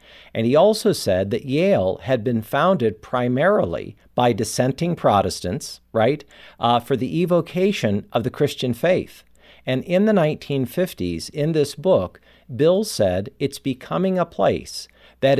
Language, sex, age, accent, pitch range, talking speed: English, male, 50-69, American, 115-145 Hz, 140 wpm